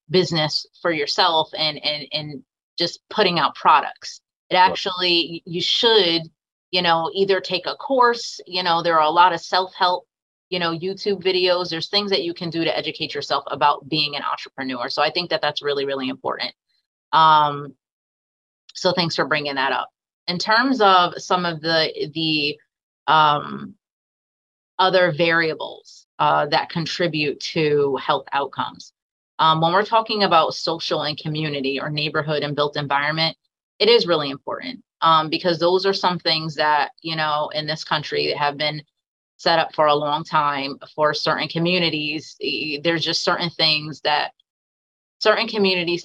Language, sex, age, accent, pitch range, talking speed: English, female, 30-49, American, 150-180 Hz, 160 wpm